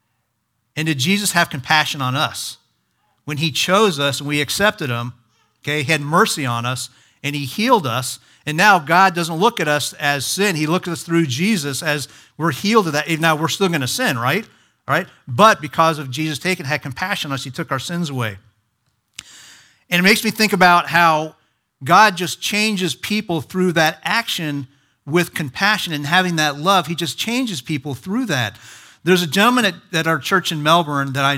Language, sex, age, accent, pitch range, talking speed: English, male, 50-69, American, 135-180 Hz, 200 wpm